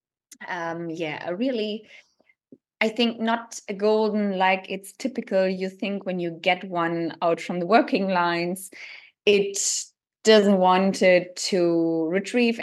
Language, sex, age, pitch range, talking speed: English, female, 20-39, 185-220 Hz, 135 wpm